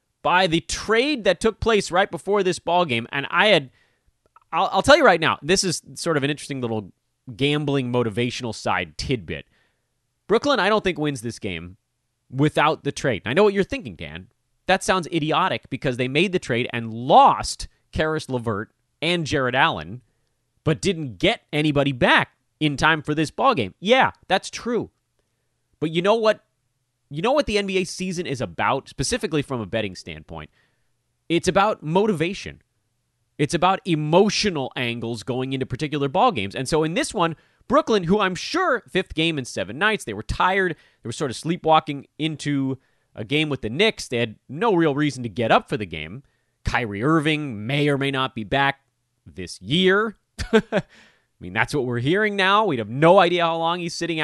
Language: English